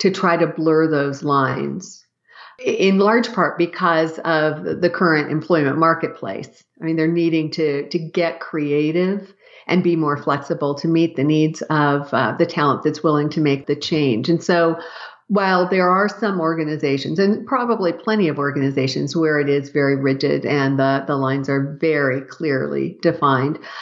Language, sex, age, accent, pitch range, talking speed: English, female, 50-69, American, 160-200 Hz, 165 wpm